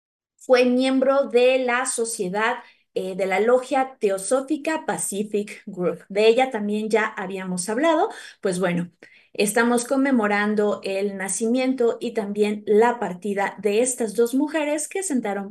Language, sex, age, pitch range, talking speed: Spanish, female, 20-39, 200-260 Hz, 130 wpm